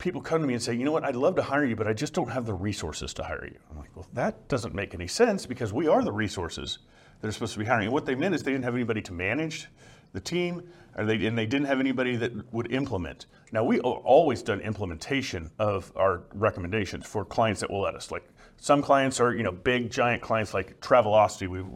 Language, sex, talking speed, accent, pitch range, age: English, male, 250 wpm, American, 105-135 Hz, 40-59